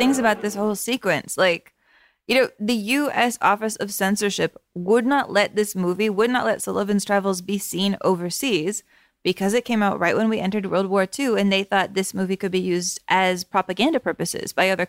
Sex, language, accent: female, English, American